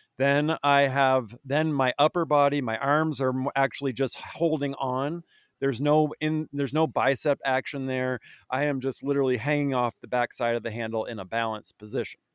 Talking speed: 180 wpm